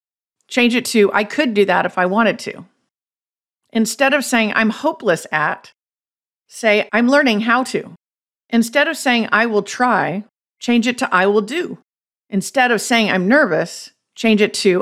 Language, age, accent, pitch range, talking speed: English, 50-69, American, 195-245 Hz, 170 wpm